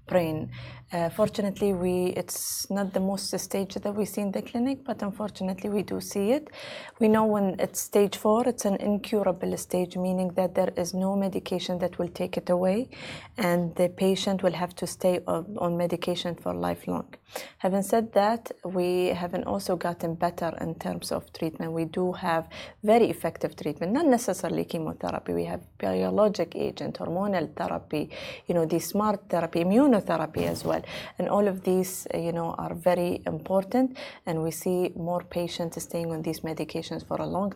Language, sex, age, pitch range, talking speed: Arabic, female, 20-39, 170-200 Hz, 175 wpm